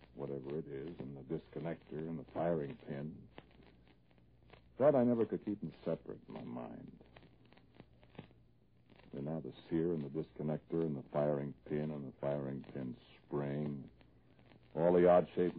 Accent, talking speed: American, 150 wpm